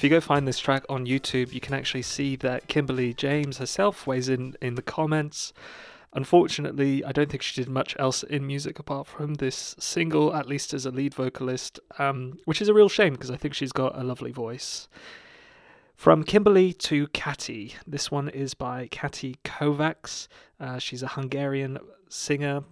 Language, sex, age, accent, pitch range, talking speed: English, male, 30-49, British, 130-145 Hz, 185 wpm